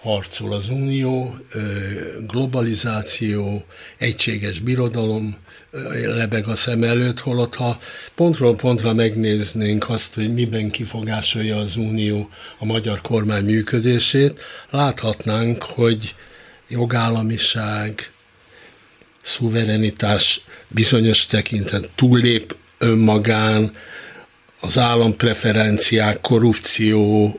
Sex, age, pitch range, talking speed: male, 60-79, 110-125 Hz, 80 wpm